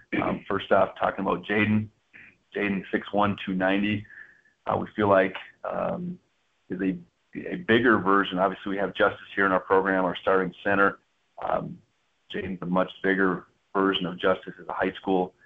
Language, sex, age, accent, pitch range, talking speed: English, male, 30-49, American, 95-100 Hz, 170 wpm